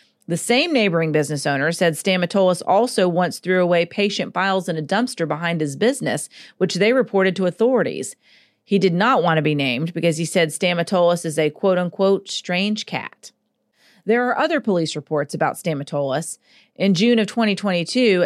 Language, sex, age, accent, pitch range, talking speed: English, female, 40-59, American, 165-215 Hz, 170 wpm